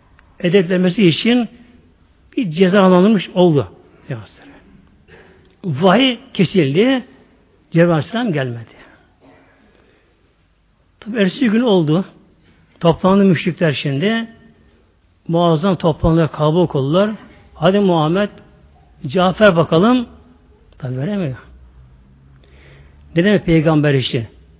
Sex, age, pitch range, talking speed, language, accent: male, 60-79, 135-200 Hz, 70 wpm, Turkish, native